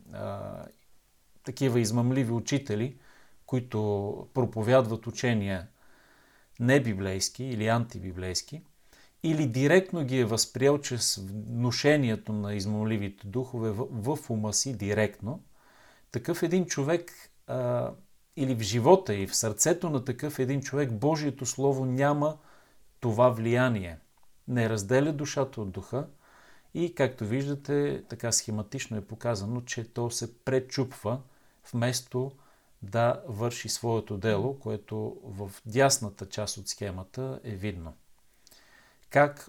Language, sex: Bulgarian, male